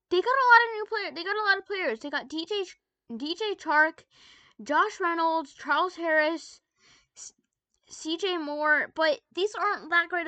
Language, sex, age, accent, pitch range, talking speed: English, female, 10-29, American, 265-370 Hz, 180 wpm